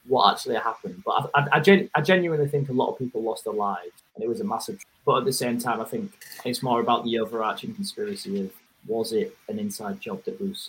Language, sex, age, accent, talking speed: English, male, 20-39, British, 255 wpm